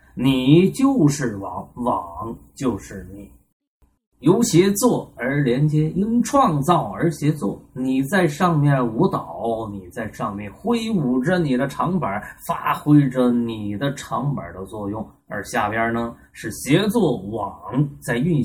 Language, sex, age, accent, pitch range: Chinese, male, 20-39, native, 120-170 Hz